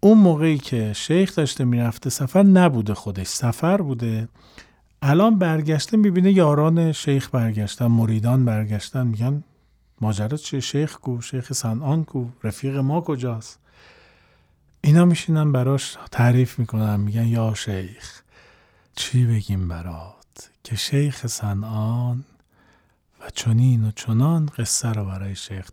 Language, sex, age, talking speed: Persian, male, 40-59, 120 wpm